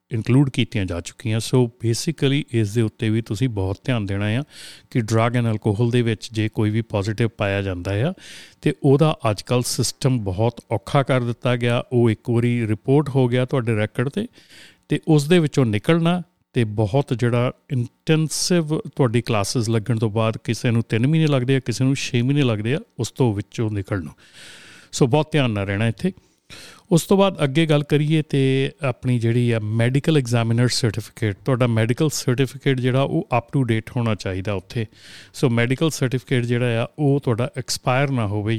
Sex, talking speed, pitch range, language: male, 180 wpm, 110-140 Hz, Punjabi